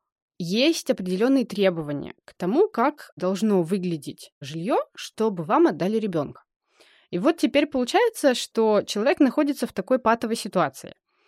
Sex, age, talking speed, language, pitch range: female, 20-39, 130 wpm, Russian, 175-240 Hz